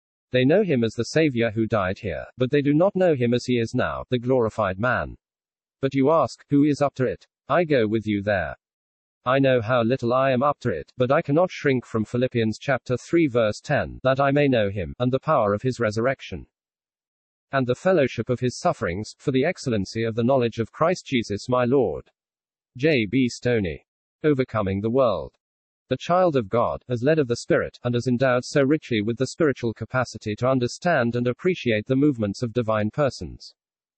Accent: British